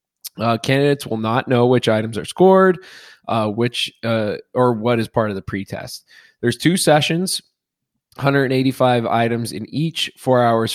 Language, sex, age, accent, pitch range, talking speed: English, male, 20-39, American, 110-130 Hz, 155 wpm